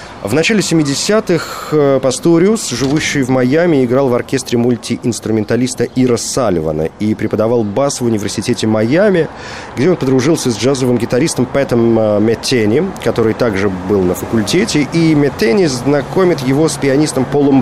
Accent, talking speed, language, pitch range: native, 135 wpm, Russian, 100-140 Hz